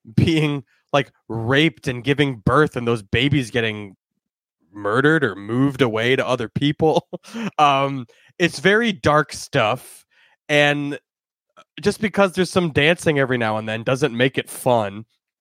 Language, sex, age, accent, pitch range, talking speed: English, male, 20-39, American, 115-155 Hz, 140 wpm